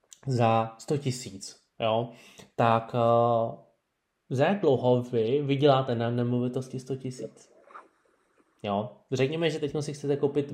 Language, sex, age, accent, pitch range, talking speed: Czech, male, 20-39, native, 115-135 Hz, 115 wpm